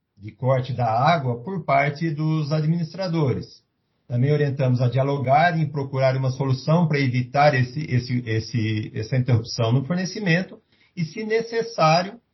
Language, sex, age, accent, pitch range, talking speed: Portuguese, male, 50-69, Brazilian, 130-165 Hz, 135 wpm